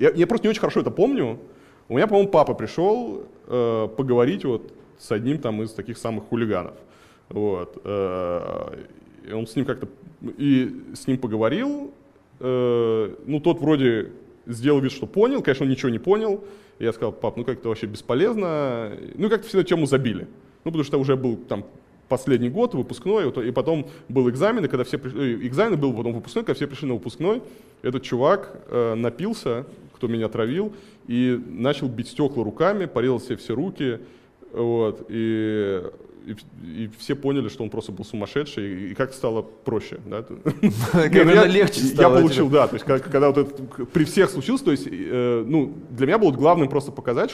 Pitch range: 115-155 Hz